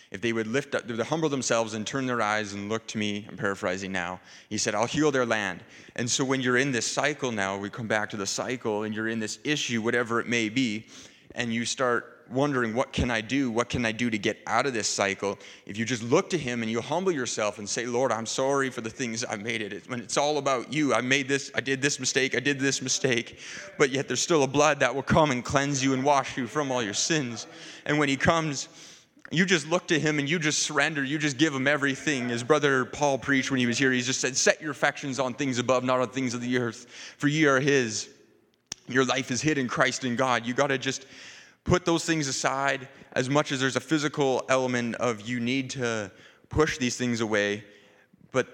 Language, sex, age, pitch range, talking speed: English, male, 30-49, 115-140 Hz, 245 wpm